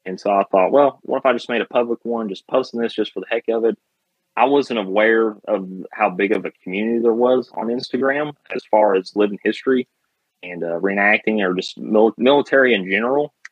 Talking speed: 215 wpm